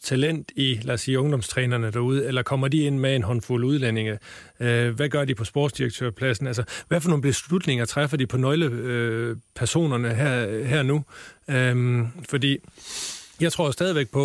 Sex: male